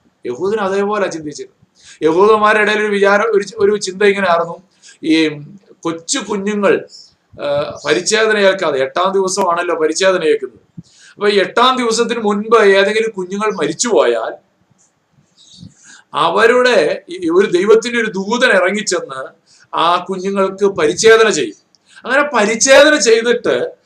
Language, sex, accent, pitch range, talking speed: Malayalam, male, native, 185-240 Hz, 100 wpm